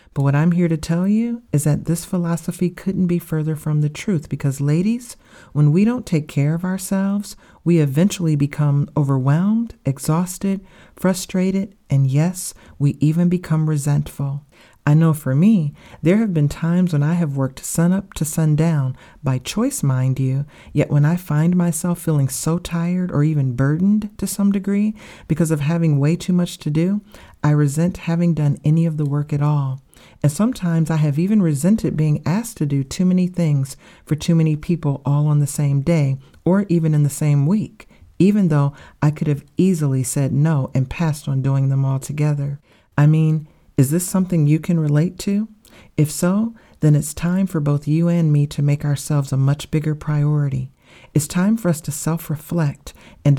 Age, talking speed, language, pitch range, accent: 40-59, 185 wpm, English, 145-175 Hz, American